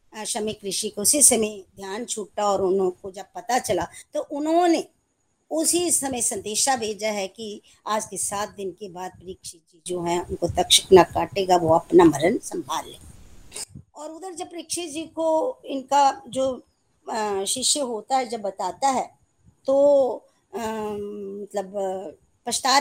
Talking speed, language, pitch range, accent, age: 145 wpm, Hindi, 195-285 Hz, native, 50-69